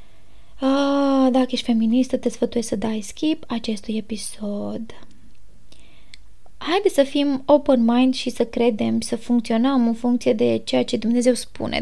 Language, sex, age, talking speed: Romanian, female, 20-39, 140 wpm